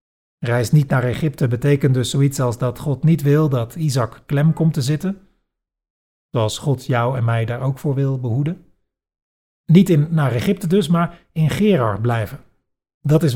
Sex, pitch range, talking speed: male, 125-155 Hz, 175 wpm